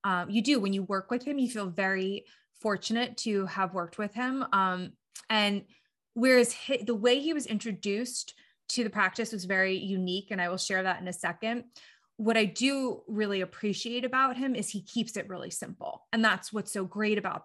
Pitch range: 195-235 Hz